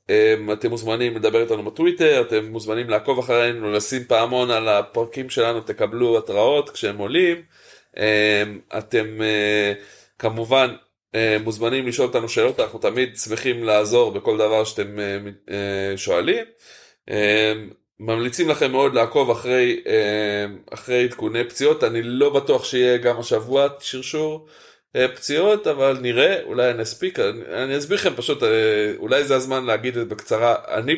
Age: 20-39